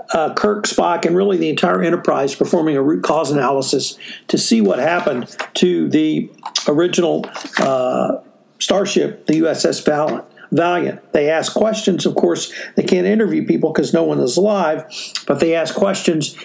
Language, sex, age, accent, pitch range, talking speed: English, male, 60-79, American, 160-205 Hz, 155 wpm